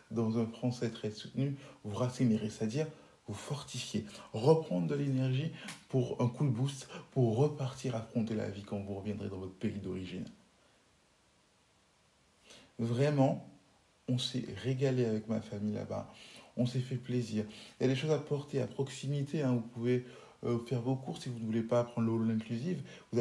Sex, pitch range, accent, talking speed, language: male, 110-135 Hz, French, 175 wpm, French